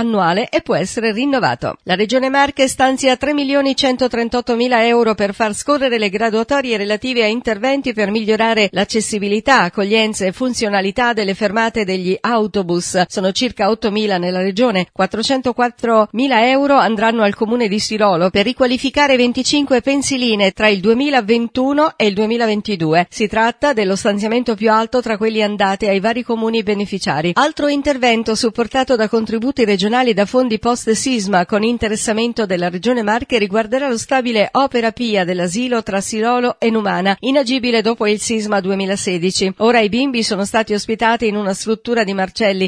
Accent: native